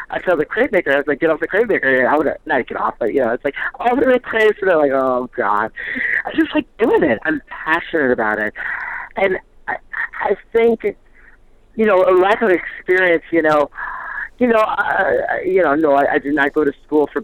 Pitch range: 145-220 Hz